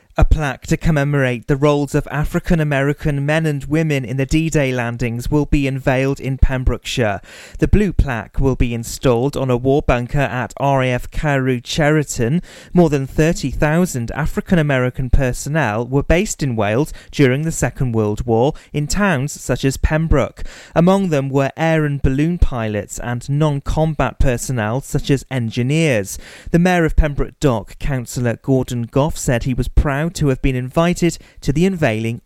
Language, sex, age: English, male, 30-49